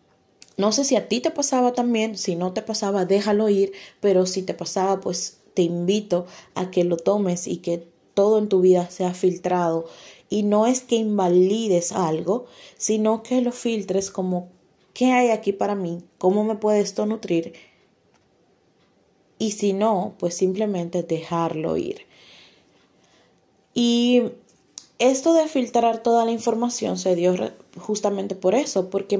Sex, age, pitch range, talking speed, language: female, 20-39, 180-215 Hz, 150 wpm, Spanish